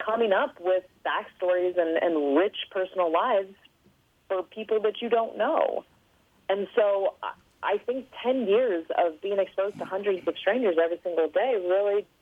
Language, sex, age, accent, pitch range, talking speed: English, female, 30-49, American, 165-205 Hz, 155 wpm